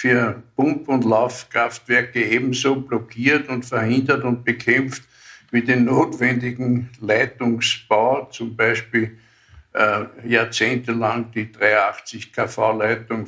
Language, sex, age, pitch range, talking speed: German, male, 60-79, 120-140 Hz, 90 wpm